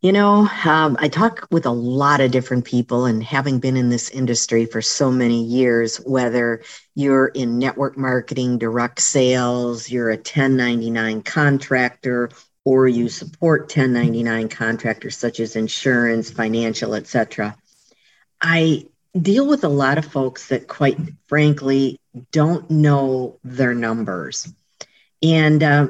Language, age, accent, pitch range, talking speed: English, 50-69, American, 120-155 Hz, 135 wpm